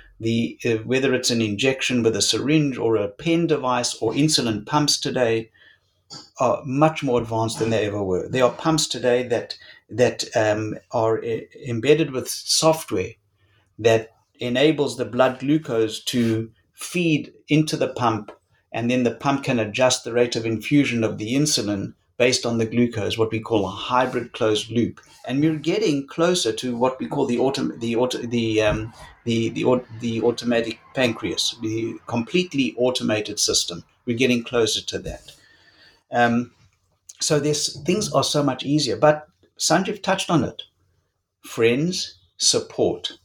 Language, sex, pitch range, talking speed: English, male, 110-145 Hz, 160 wpm